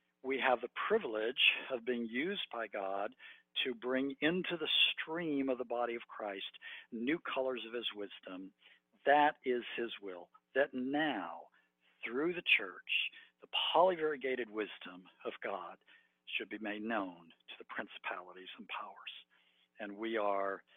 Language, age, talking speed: English, 60-79, 145 wpm